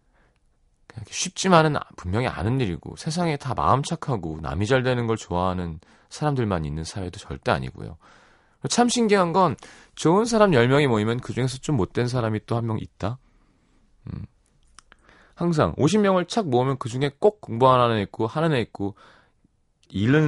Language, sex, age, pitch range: Korean, male, 30-49, 95-155 Hz